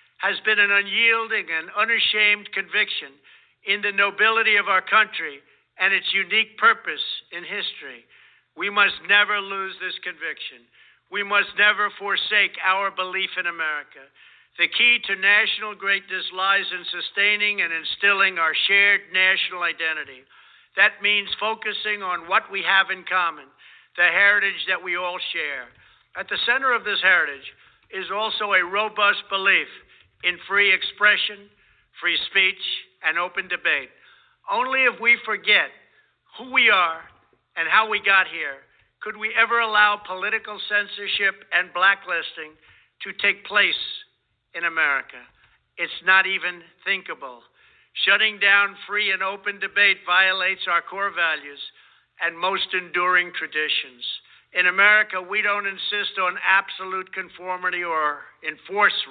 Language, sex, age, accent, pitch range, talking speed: English, male, 60-79, American, 185-210 Hz, 135 wpm